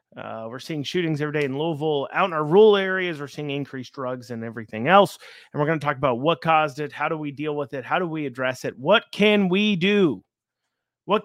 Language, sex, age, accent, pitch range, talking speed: English, male, 30-49, American, 135-185 Hz, 240 wpm